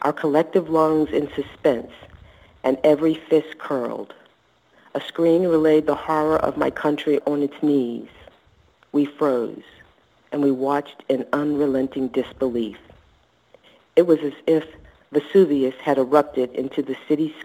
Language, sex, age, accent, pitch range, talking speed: English, female, 50-69, American, 130-155 Hz, 130 wpm